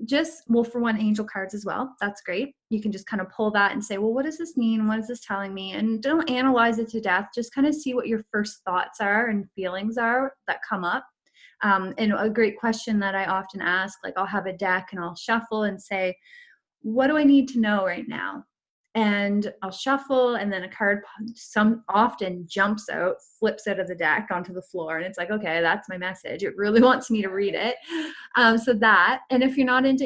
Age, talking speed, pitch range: 20-39, 240 wpm, 195-245 Hz